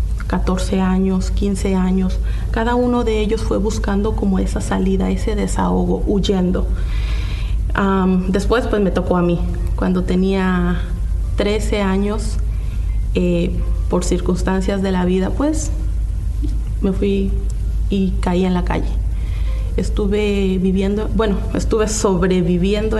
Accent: Venezuelan